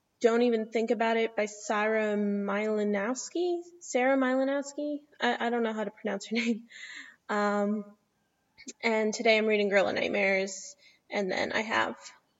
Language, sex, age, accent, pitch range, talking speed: English, female, 10-29, American, 215-265 Hz, 150 wpm